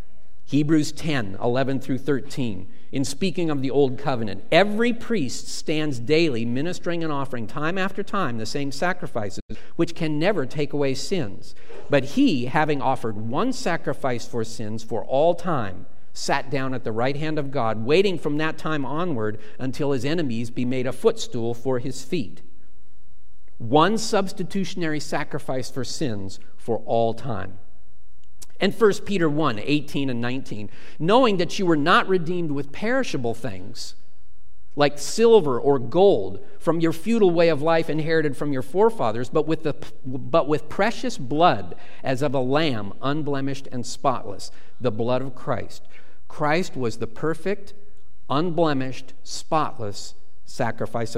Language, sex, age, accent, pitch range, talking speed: English, male, 50-69, American, 115-165 Hz, 150 wpm